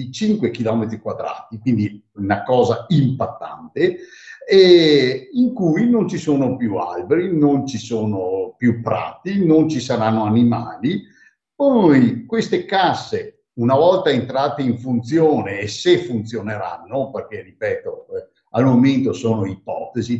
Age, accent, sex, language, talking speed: 50-69, native, male, Italian, 120 wpm